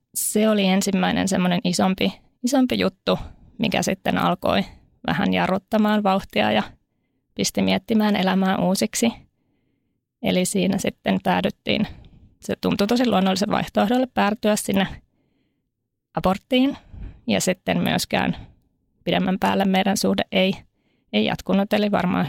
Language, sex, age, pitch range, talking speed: Finnish, female, 20-39, 185-215 Hz, 115 wpm